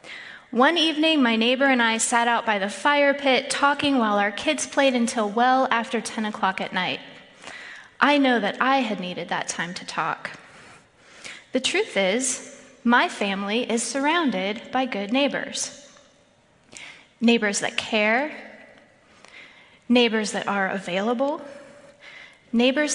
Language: English